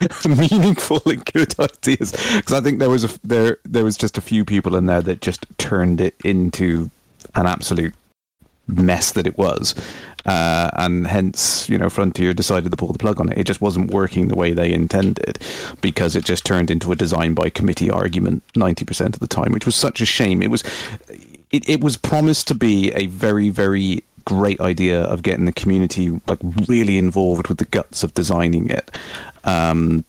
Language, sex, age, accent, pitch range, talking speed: English, male, 30-49, British, 90-115 Hz, 195 wpm